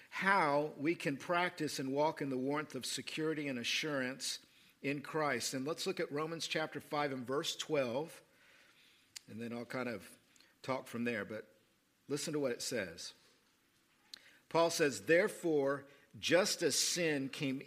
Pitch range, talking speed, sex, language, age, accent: 130-165 Hz, 155 wpm, male, English, 50-69, American